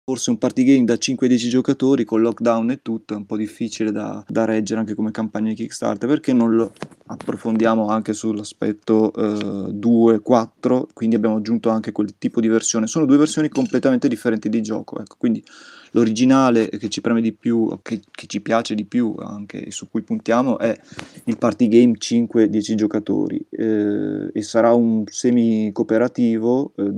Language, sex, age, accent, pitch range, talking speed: Italian, male, 20-39, native, 105-120 Hz, 175 wpm